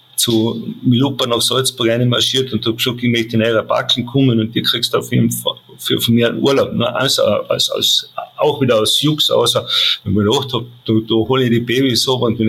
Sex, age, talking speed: male, 50-69, 225 wpm